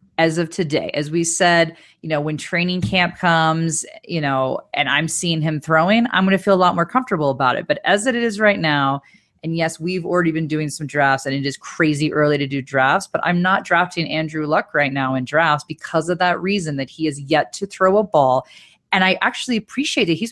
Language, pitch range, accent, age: English, 150-200 Hz, American, 30-49